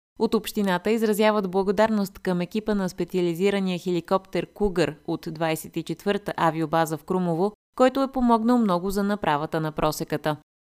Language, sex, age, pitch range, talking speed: Bulgarian, female, 20-39, 165-220 Hz, 130 wpm